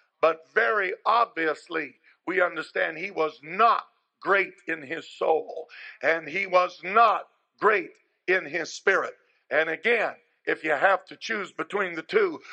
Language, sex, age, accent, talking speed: English, male, 50-69, American, 145 wpm